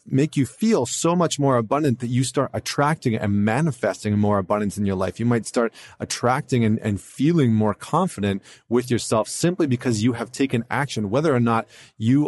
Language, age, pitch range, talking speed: English, 30-49, 110-140 Hz, 190 wpm